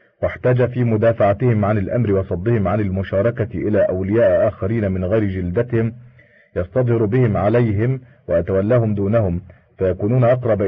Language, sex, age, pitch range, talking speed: Arabic, male, 40-59, 100-120 Hz, 120 wpm